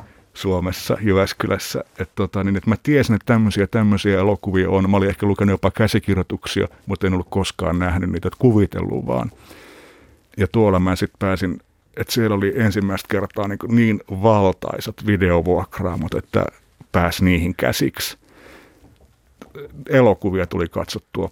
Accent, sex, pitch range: native, male, 95-110 Hz